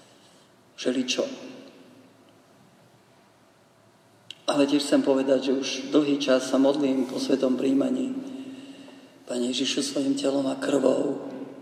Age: 40-59